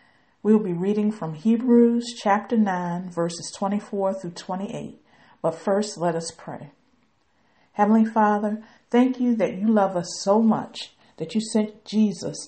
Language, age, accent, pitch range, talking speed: English, 50-69, American, 180-220 Hz, 150 wpm